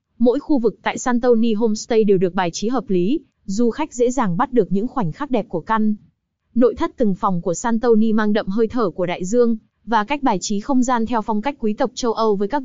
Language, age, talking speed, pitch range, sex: Vietnamese, 20-39, 245 wpm, 195-245 Hz, female